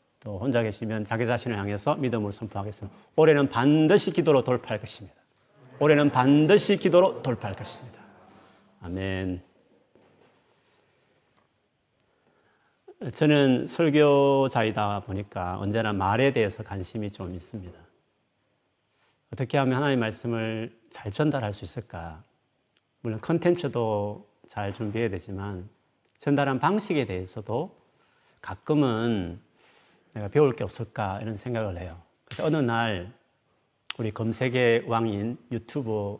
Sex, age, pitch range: male, 40-59, 100-135 Hz